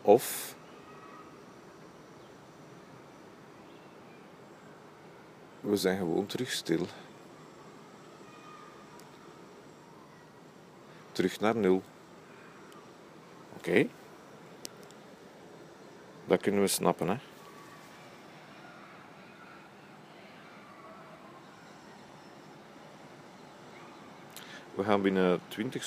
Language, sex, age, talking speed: Dutch, male, 50-69, 45 wpm